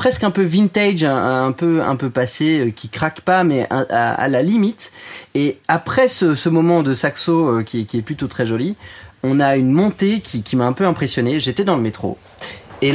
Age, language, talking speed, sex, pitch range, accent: 30-49, French, 215 wpm, male, 125-180 Hz, French